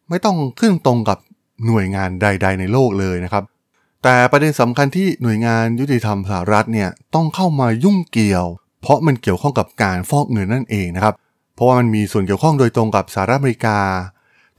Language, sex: Thai, male